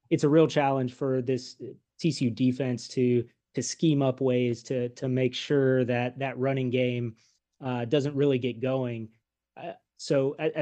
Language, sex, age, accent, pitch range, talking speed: English, male, 30-49, American, 125-150 Hz, 165 wpm